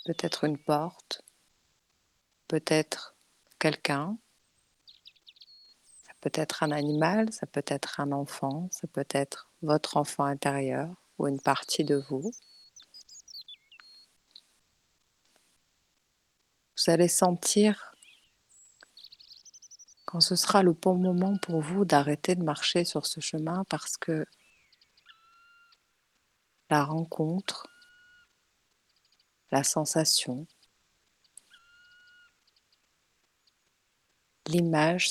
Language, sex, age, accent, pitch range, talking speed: French, female, 40-59, French, 150-195 Hz, 80 wpm